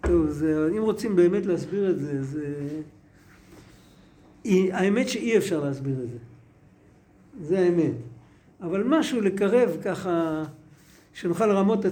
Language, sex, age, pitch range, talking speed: Hebrew, male, 60-79, 170-220 Hz, 125 wpm